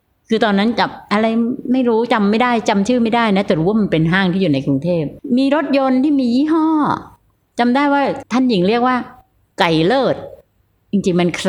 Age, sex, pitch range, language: 60-79, female, 175-240 Hz, Thai